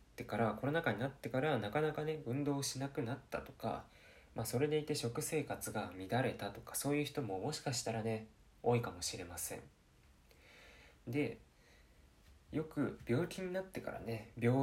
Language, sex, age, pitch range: Japanese, male, 20-39, 95-140 Hz